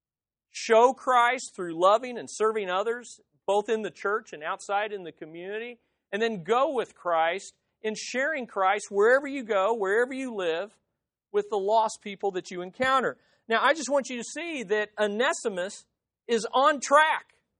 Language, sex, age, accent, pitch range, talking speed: English, male, 40-59, American, 210-295 Hz, 165 wpm